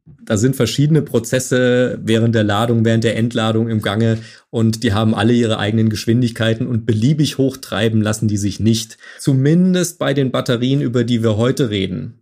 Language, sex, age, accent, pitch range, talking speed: German, male, 30-49, German, 110-130 Hz, 170 wpm